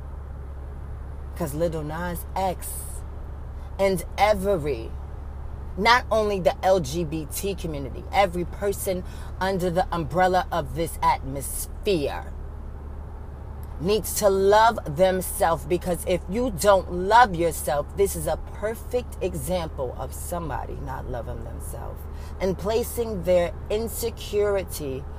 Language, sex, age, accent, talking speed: English, female, 30-49, American, 100 wpm